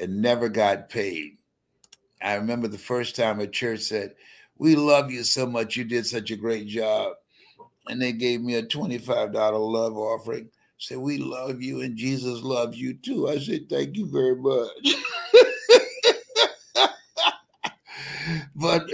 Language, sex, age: English, male, 60-79